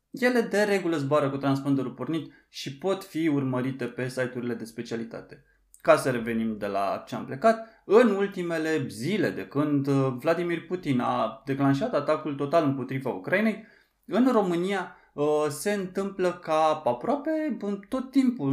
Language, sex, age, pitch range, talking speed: Romanian, male, 20-39, 130-195 Hz, 140 wpm